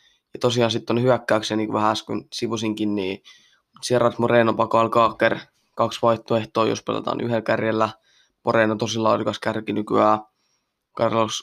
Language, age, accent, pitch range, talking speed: Finnish, 20-39, native, 110-120 Hz, 135 wpm